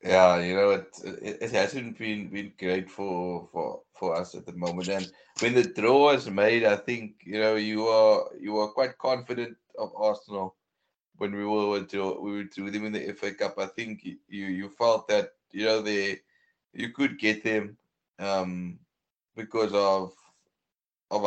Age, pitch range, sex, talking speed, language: 20-39, 100-125 Hz, male, 180 wpm, English